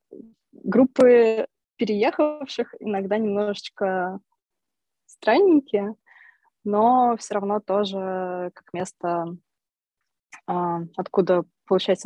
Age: 20-39